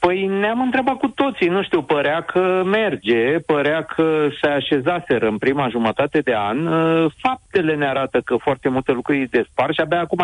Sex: male